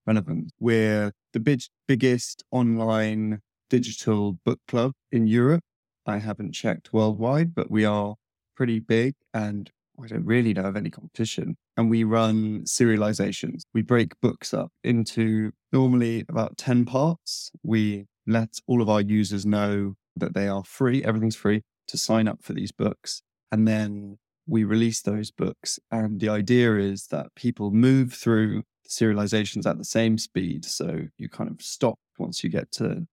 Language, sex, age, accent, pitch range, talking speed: English, male, 20-39, British, 105-120 Hz, 160 wpm